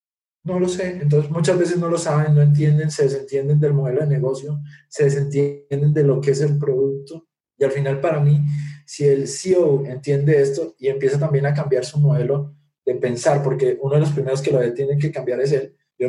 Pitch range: 135-150 Hz